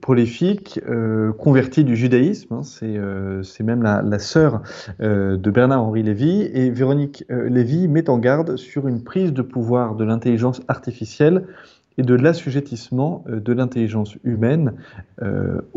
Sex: male